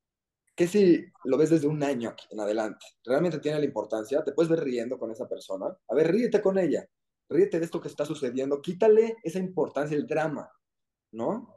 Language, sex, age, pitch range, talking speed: Spanish, male, 30-49, 110-165 Hz, 190 wpm